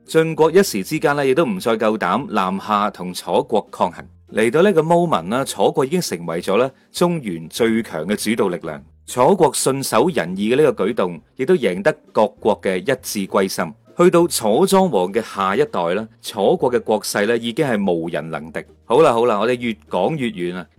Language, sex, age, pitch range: Chinese, male, 30-49, 105-160 Hz